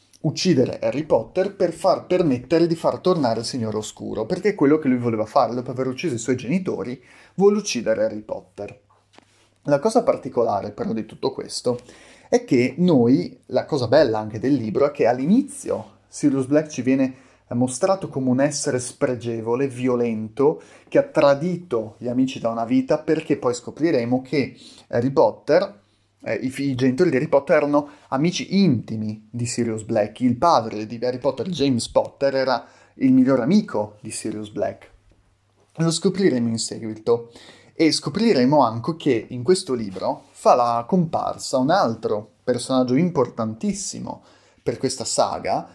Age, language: 30-49, Italian